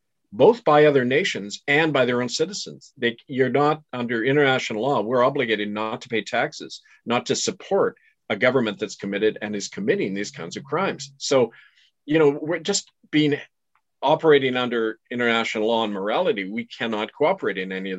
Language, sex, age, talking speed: English, male, 50-69, 175 wpm